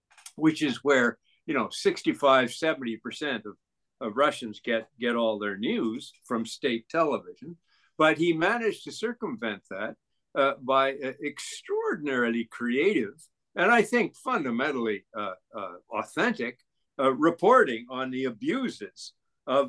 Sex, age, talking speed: male, 60-79, 125 wpm